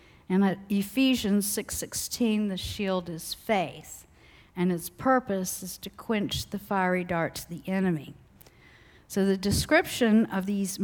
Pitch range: 180-220 Hz